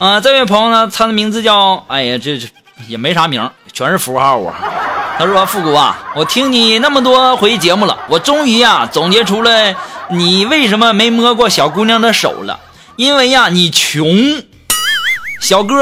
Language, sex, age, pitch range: Chinese, male, 20-39, 195-260 Hz